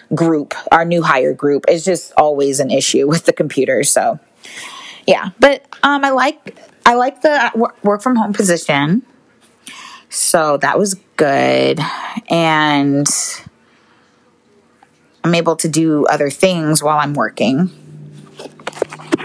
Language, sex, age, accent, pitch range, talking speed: English, female, 20-39, American, 155-260 Hz, 125 wpm